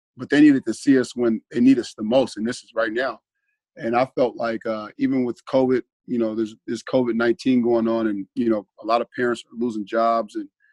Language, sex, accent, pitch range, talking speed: English, male, American, 110-130 Hz, 240 wpm